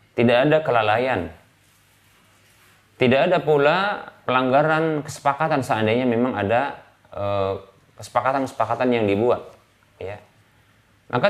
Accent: native